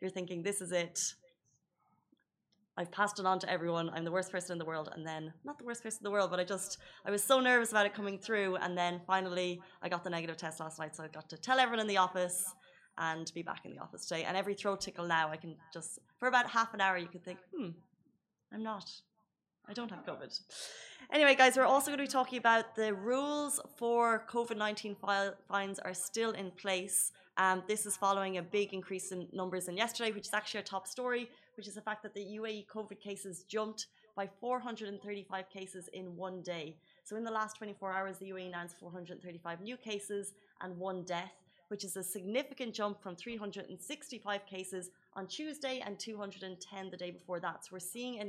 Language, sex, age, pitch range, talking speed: Arabic, female, 20-39, 185-220 Hz, 215 wpm